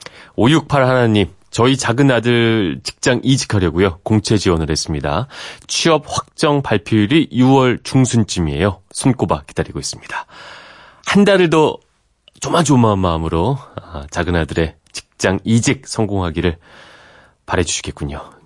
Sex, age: male, 30-49